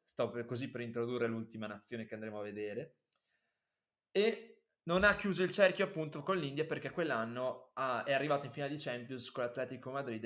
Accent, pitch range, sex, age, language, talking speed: native, 115-145 Hz, male, 20-39, Italian, 185 wpm